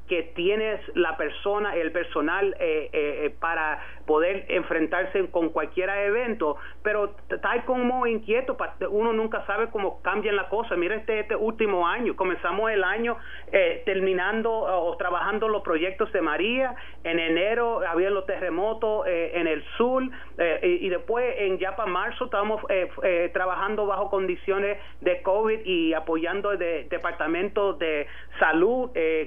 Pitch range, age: 175-230 Hz, 30-49